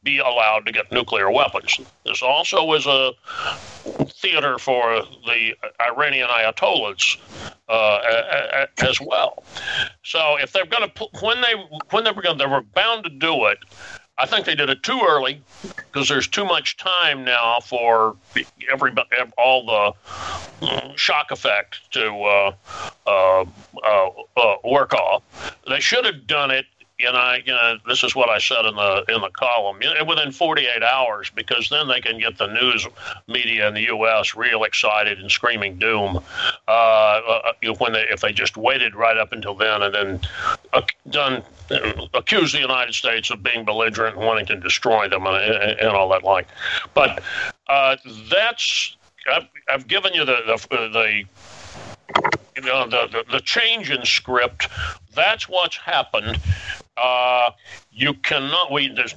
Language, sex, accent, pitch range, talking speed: English, male, American, 105-140 Hz, 160 wpm